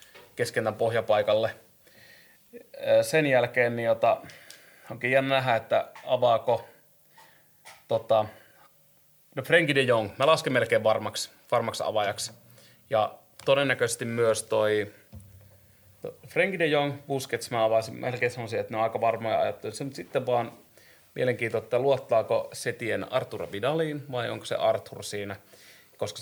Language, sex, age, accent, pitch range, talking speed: Finnish, male, 30-49, native, 105-130 Hz, 130 wpm